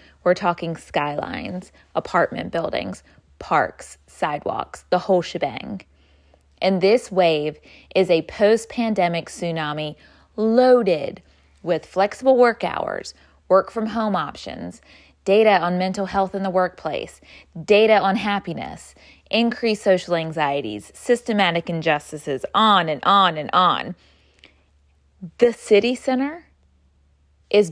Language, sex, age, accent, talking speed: English, female, 20-39, American, 110 wpm